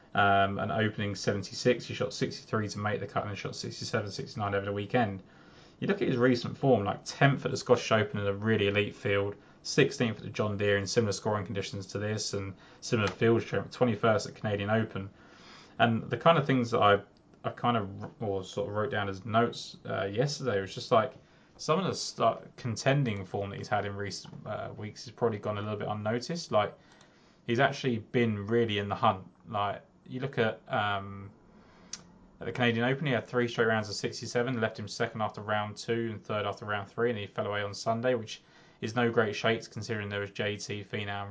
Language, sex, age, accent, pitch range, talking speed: English, male, 20-39, British, 100-120 Hz, 215 wpm